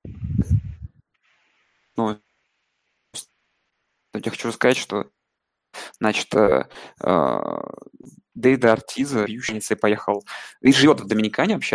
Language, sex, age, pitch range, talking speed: Russian, male, 20-39, 105-125 Hz, 90 wpm